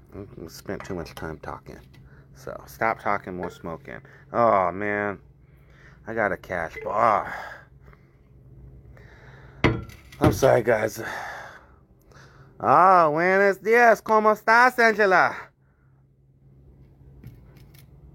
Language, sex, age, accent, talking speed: English, male, 30-49, American, 95 wpm